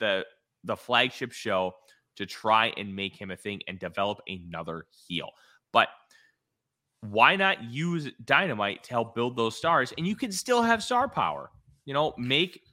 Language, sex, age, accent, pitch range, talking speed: English, male, 30-49, American, 100-130 Hz, 165 wpm